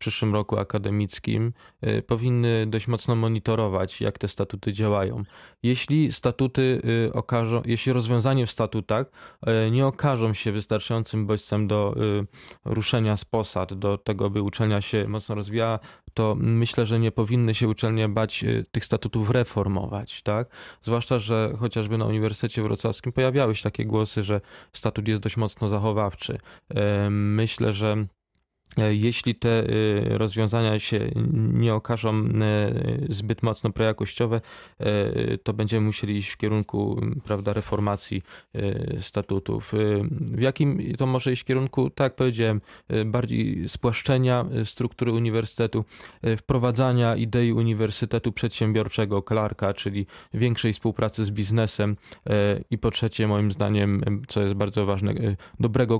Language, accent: Polish, native